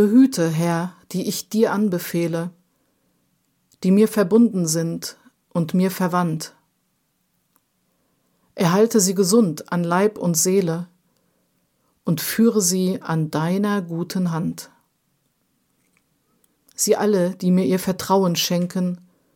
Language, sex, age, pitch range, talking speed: German, female, 50-69, 170-205 Hz, 105 wpm